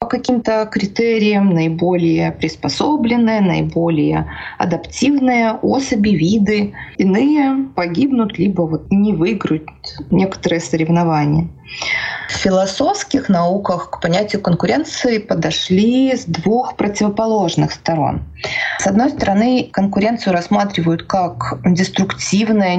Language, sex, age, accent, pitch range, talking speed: Russian, female, 20-39, native, 170-230 Hz, 90 wpm